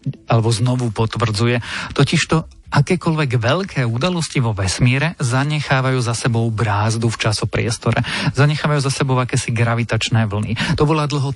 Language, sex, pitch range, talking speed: Slovak, male, 115-135 Hz, 125 wpm